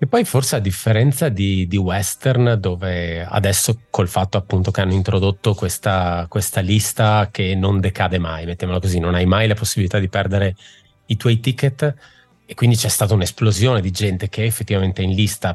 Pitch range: 95-120 Hz